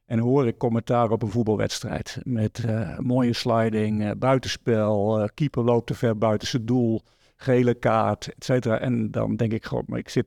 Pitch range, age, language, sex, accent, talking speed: 110-135 Hz, 50-69, Dutch, male, Dutch, 185 wpm